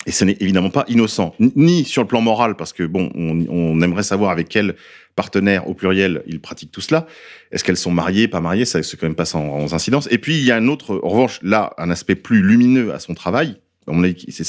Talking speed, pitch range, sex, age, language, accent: 245 wpm, 90-120 Hz, male, 40-59, French, French